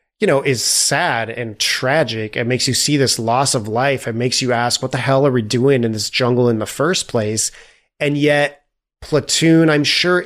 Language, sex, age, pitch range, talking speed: English, male, 30-49, 120-145 Hz, 210 wpm